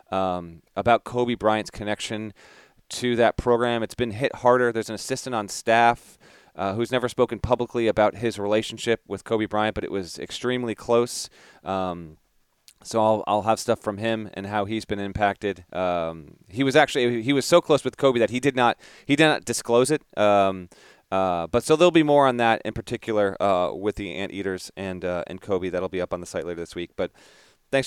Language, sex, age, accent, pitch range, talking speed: English, male, 30-49, American, 105-130 Hz, 205 wpm